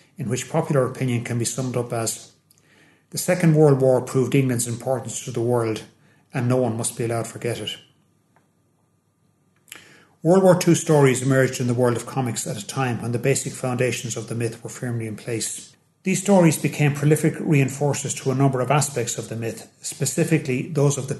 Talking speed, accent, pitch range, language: 195 wpm, Irish, 120-145 Hz, English